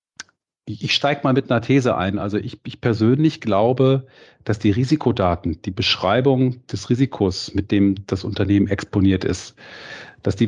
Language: German